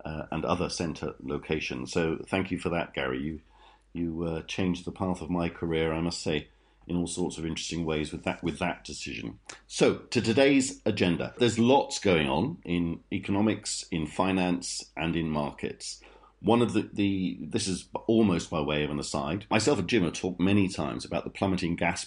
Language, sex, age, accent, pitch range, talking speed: English, male, 50-69, British, 80-95 Hz, 195 wpm